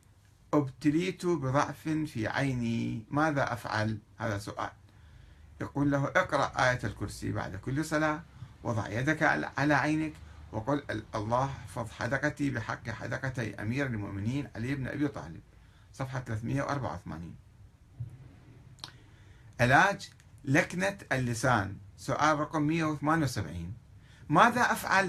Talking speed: 100 wpm